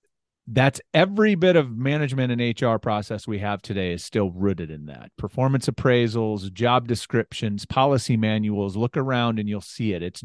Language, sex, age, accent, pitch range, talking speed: English, male, 40-59, American, 105-130 Hz, 170 wpm